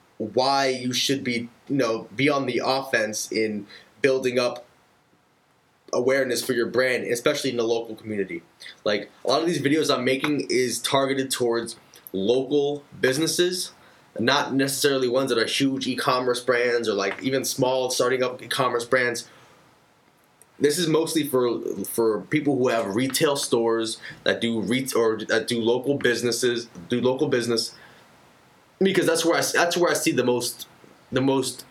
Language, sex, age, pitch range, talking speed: English, male, 20-39, 120-155 Hz, 155 wpm